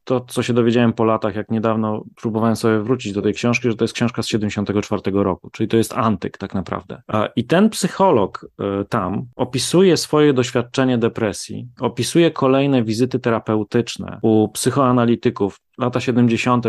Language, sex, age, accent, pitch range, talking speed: Polish, male, 30-49, native, 110-140 Hz, 155 wpm